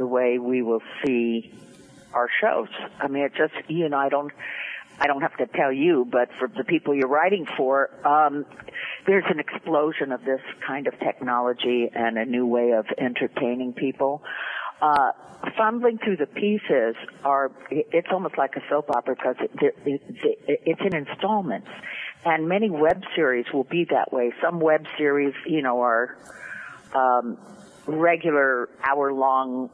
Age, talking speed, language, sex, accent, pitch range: 50-69, 165 wpm, English, female, American, 125-165 Hz